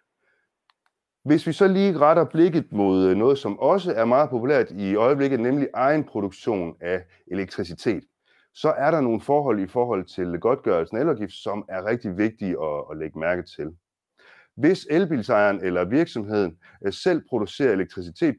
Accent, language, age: native, Danish, 30-49